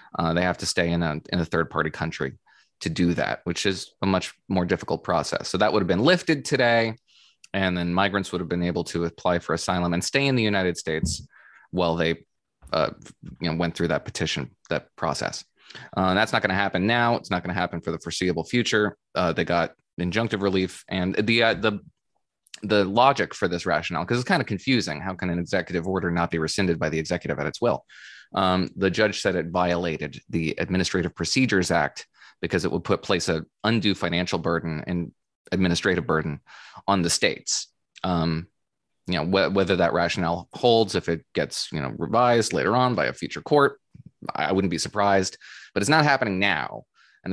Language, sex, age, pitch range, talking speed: English, male, 20-39, 85-105 Hz, 205 wpm